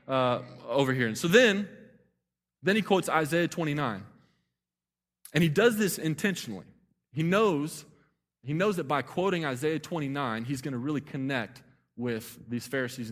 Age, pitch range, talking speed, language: 20-39, 105-145 Hz, 150 wpm, English